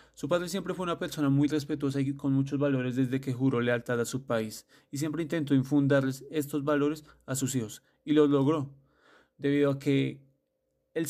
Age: 30-49